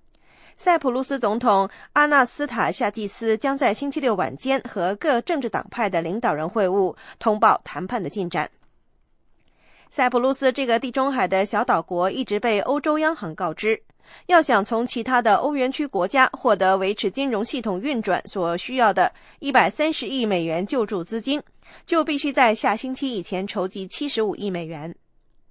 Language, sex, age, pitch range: English, female, 20-39, 195-270 Hz